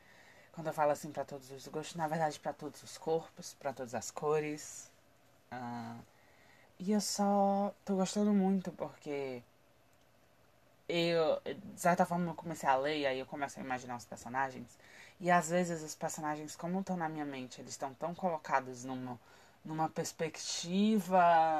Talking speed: 165 wpm